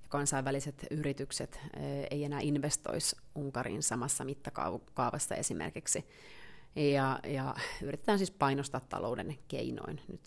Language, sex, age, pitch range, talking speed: Finnish, female, 30-49, 135-155 Hz, 100 wpm